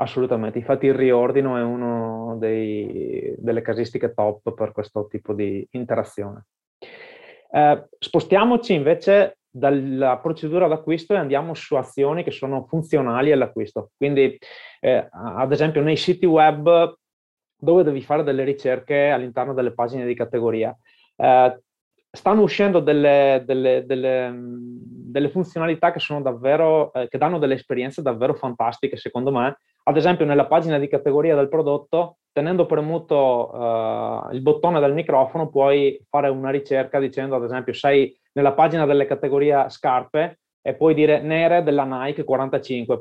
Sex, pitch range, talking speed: male, 125-155 Hz, 140 wpm